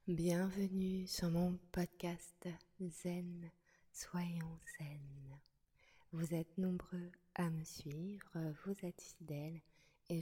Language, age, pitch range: French, 20-39, 155-185 Hz